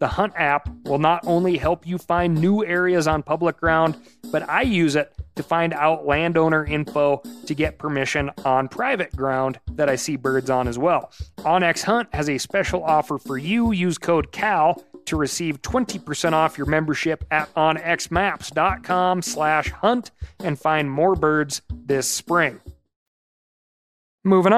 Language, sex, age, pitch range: English, male, 30-49, 145-185 Hz